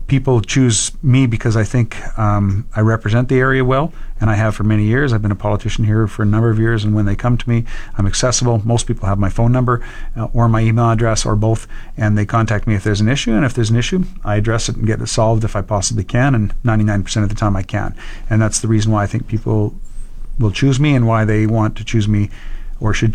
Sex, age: male, 40-59